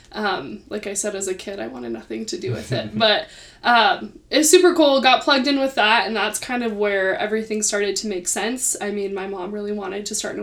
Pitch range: 210-260 Hz